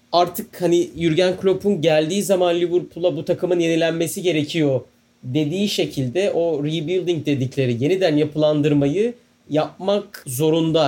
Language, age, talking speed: Turkish, 40-59, 110 wpm